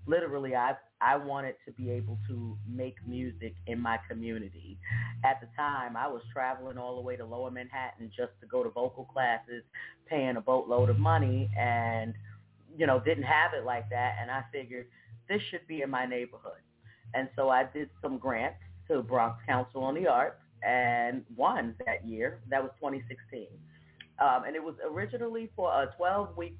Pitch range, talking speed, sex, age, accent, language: 115-140 Hz, 180 wpm, female, 30-49, American, English